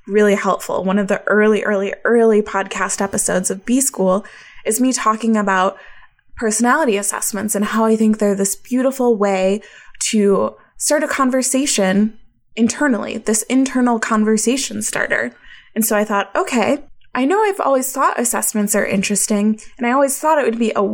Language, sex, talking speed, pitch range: English, female, 165 wpm, 200-245 Hz